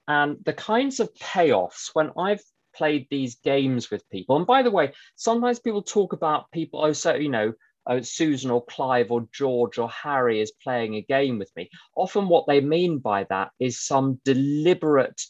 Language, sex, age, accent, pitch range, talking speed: English, male, 30-49, British, 115-155 Hz, 185 wpm